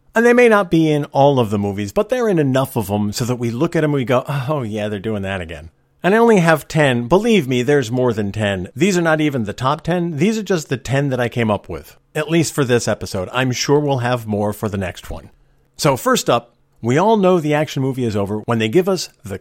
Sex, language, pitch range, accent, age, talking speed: male, English, 110-165 Hz, American, 50-69, 275 wpm